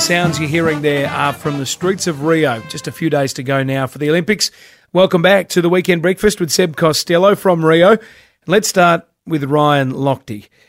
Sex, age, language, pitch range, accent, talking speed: male, 30-49, English, 140-165 Hz, Australian, 200 wpm